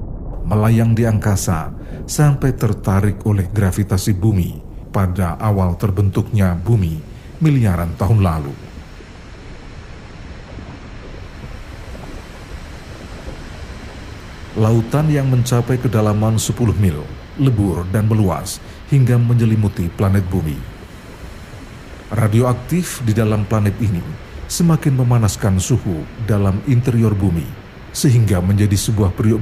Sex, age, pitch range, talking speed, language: male, 50-69, 90-115 Hz, 90 wpm, Indonesian